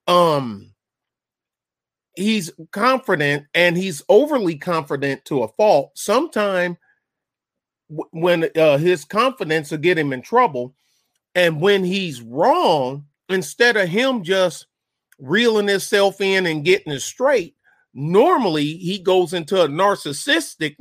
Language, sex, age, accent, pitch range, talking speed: English, male, 30-49, American, 150-200 Hz, 120 wpm